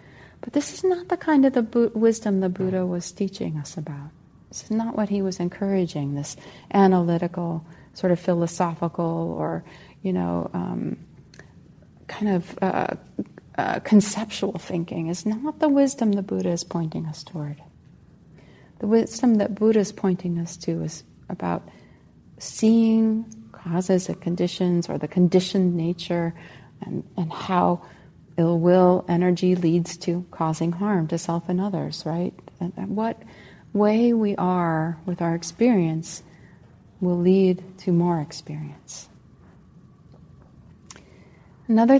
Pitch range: 170-205 Hz